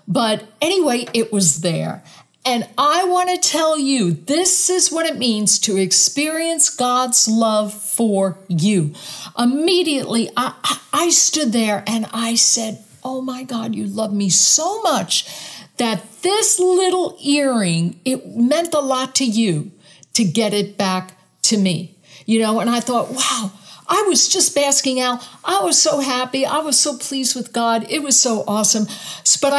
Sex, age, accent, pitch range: female, 60-79, American, 205-275 Hz